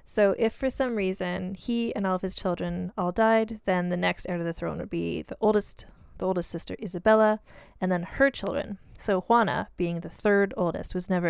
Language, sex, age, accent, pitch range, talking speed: English, female, 20-39, American, 175-210 Hz, 210 wpm